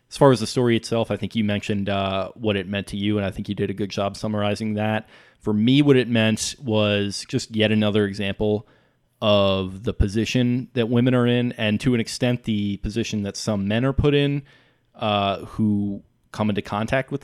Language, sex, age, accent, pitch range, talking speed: English, male, 20-39, American, 105-120 Hz, 210 wpm